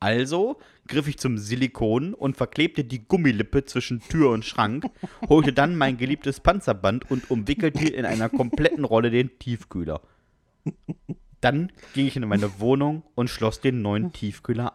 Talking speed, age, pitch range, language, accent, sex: 150 wpm, 30-49, 110-145 Hz, German, German, male